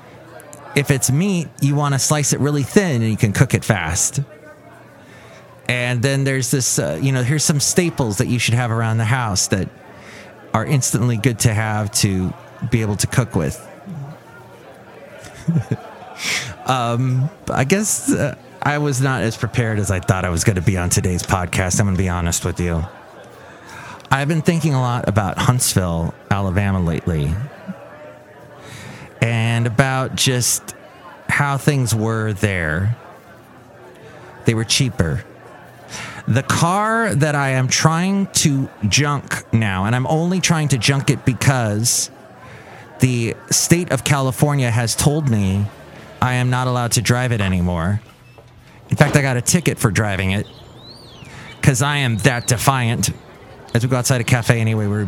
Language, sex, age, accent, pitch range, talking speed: English, male, 30-49, American, 105-140 Hz, 160 wpm